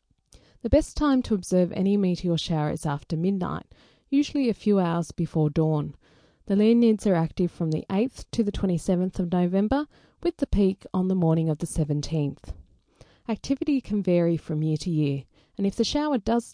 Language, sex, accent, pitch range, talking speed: English, female, Australian, 160-215 Hz, 180 wpm